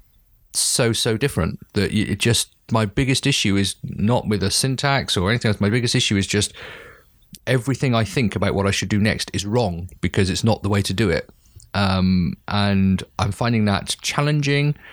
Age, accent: 30-49, British